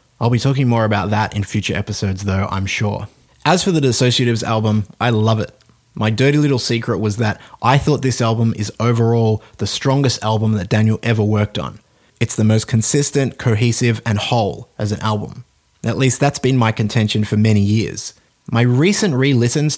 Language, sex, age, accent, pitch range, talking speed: English, male, 20-39, Australian, 110-130 Hz, 190 wpm